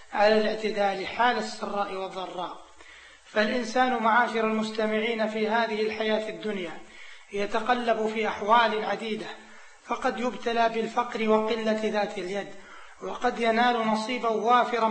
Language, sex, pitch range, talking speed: Arabic, male, 215-235 Hz, 105 wpm